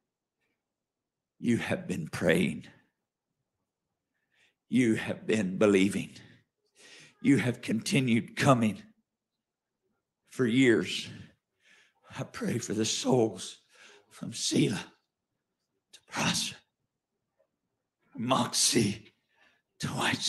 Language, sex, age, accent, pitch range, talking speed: English, male, 60-79, American, 175-230 Hz, 80 wpm